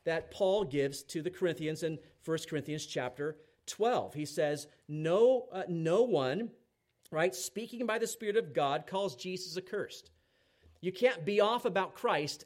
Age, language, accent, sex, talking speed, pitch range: 40-59, English, American, male, 160 wpm, 140-195 Hz